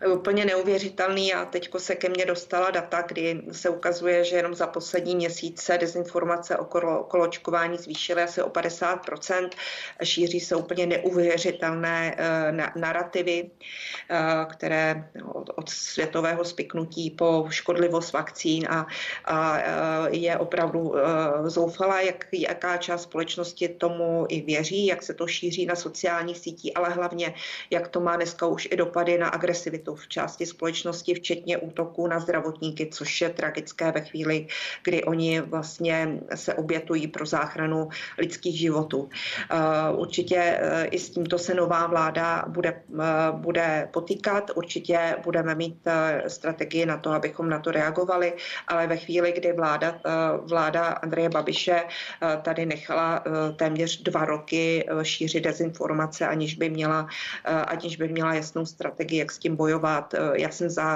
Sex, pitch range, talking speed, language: female, 160-175 Hz, 140 wpm, Czech